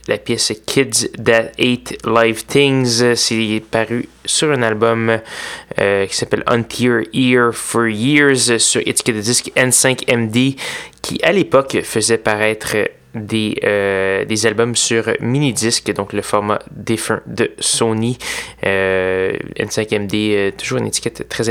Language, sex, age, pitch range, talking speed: French, male, 20-39, 110-125 Hz, 135 wpm